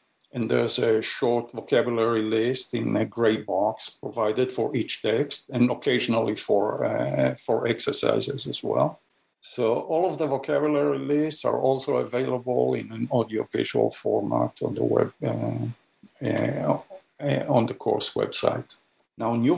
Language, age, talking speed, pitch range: English, 50-69, 145 wpm, 115-140 Hz